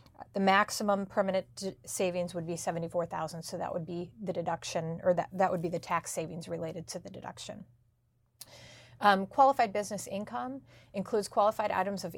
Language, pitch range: English, 170-195 Hz